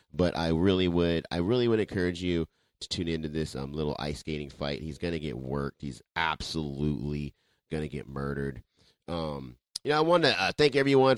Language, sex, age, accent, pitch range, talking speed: English, male, 30-49, American, 75-100 Hz, 195 wpm